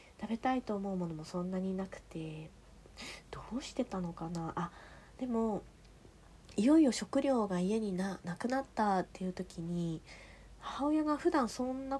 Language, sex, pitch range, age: Japanese, female, 170-240 Hz, 20-39